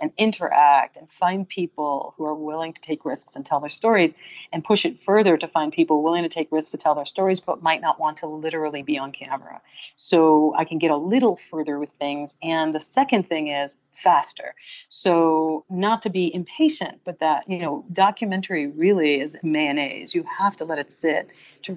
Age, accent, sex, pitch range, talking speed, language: 40-59, American, female, 155-200 Hz, 205 wpm, English